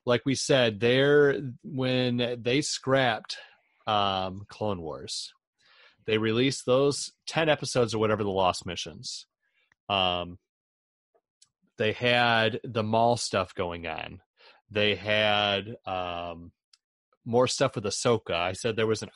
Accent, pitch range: American, 105-135 Hz